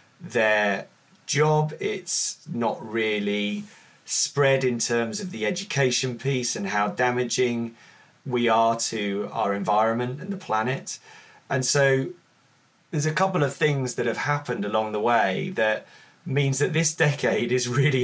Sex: male